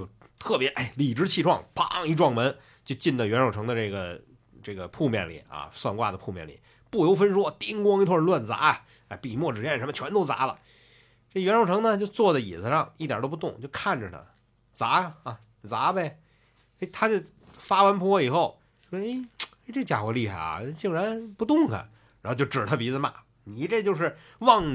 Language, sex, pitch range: Chinese, male, 115-185 Hz